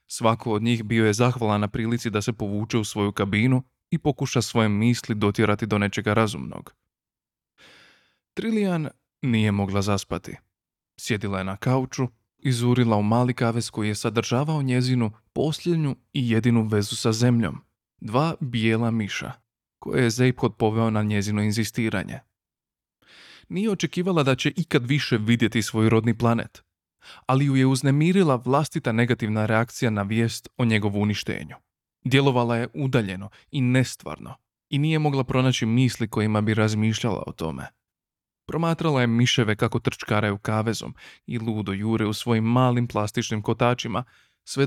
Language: Croatian